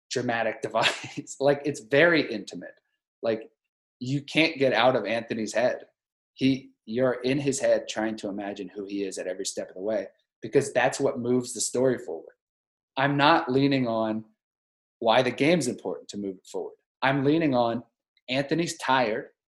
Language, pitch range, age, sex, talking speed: English, 110-145 Hz, 30-49, male, 170 wpm